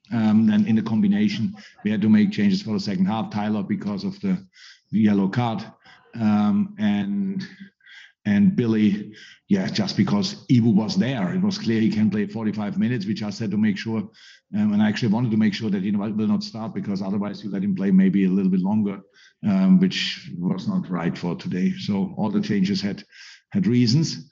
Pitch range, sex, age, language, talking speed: 120-200 Hz, male, 50-69, English, 210 wpm